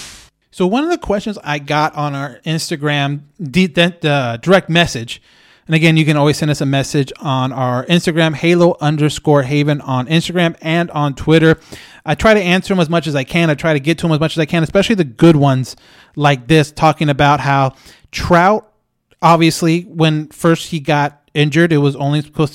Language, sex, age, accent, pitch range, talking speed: English, male, 30-49, American, 145-170 Hz, 195 wpm